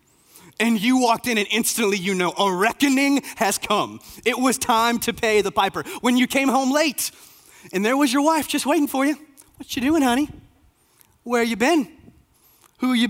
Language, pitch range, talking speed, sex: English, 160-235 Hz, 195 wpm, male